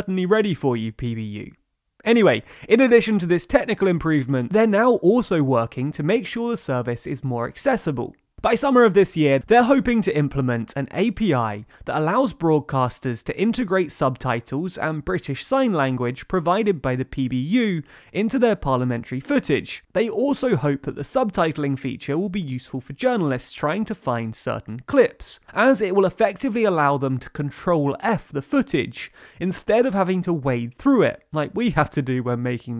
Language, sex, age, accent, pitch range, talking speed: English, male, 20-39, British, 130-215 Hz, 170 wpm